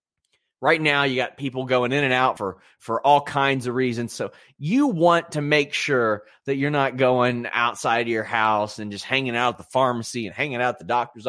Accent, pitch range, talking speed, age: American, 120-165 Hz, 225 wpm, 30-49